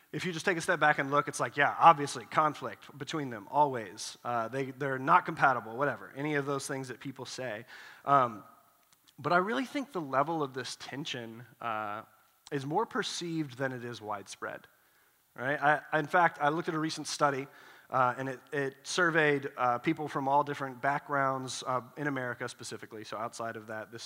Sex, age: male, 30-49